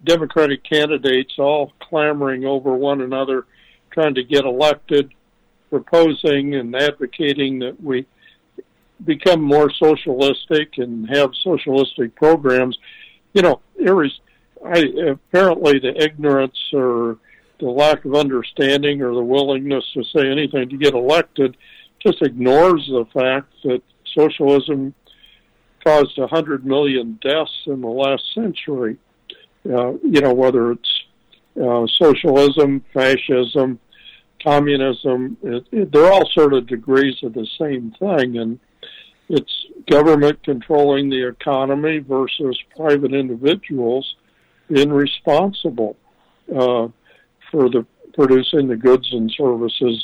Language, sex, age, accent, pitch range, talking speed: English, male, 60-79, American, 130-150 Hz, 115 wpm